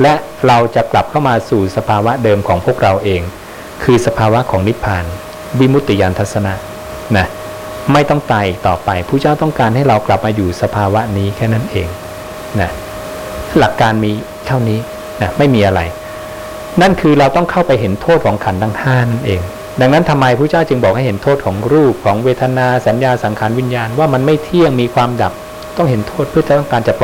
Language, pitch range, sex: English, 105-140 Hz, male